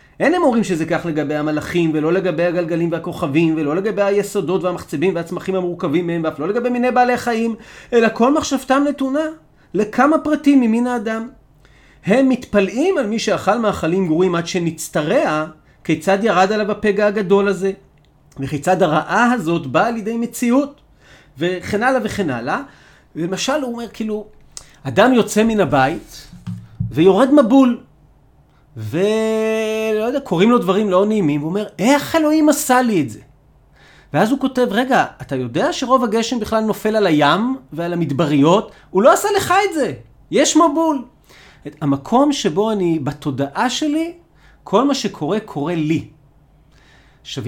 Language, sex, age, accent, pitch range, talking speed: Hebrew, male, 40-59, native, 160-245 Hz, 145 wpm